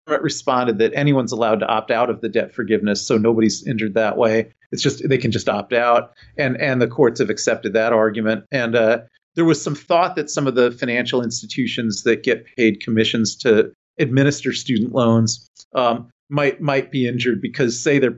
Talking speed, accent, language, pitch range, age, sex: 195 wpm, American, English, 115-140 Hz, 40-59, male